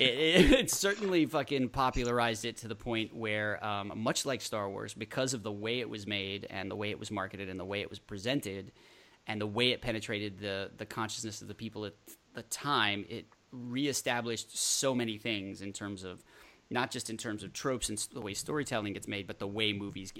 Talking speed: 215 wpm